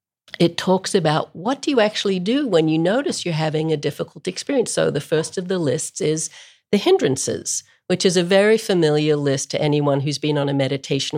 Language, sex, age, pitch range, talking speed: English, female, 50-69, 145-185 Hz, 205 wpm